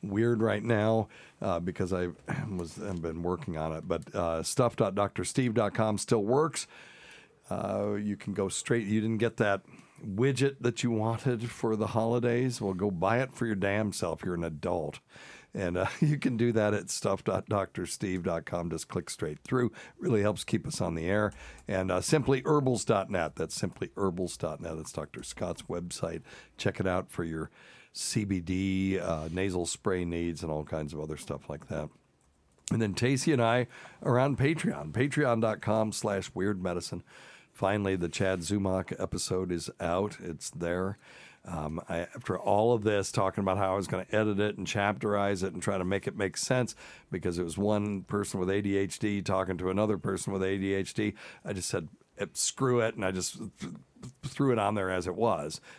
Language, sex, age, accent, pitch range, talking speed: English, male, 60-79, American, 90-115 Hz, 175 wpm